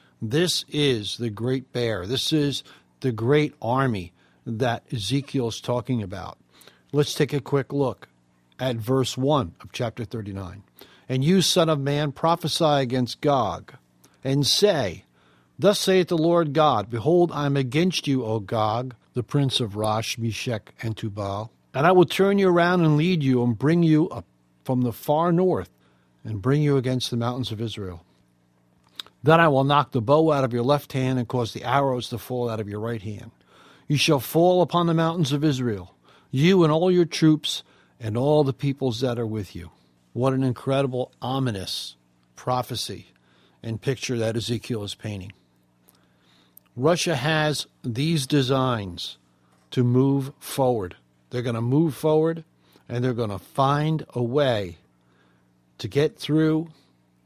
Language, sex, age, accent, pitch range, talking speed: English, male, 60-79, American, 105-145 Hz, 165 wpm